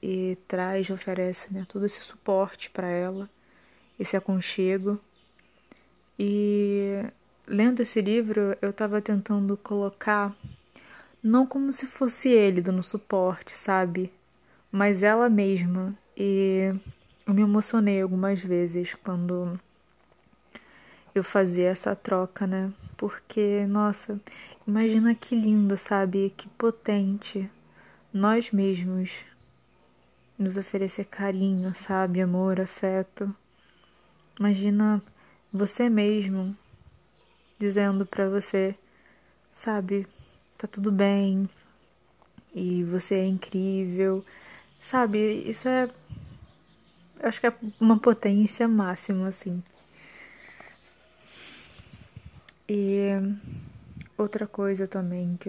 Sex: female